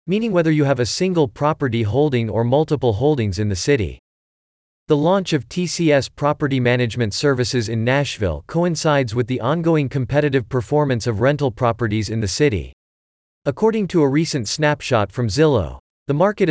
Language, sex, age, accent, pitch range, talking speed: English, male, 40-59, American, 115-155 Hz, 160 wpm